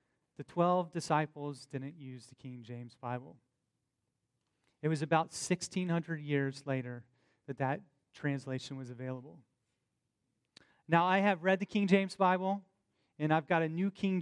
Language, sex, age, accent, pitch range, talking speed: English, male, 30-49, American, 140-185 Hz, 145 wpm